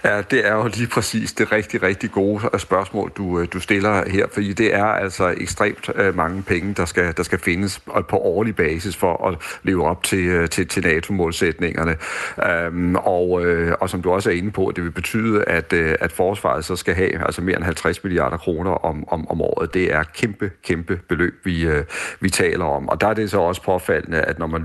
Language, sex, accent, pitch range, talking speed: Danish, male, native, 85-100 Hz, 205 wpm